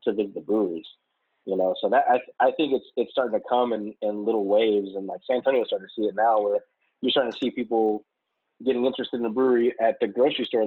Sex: male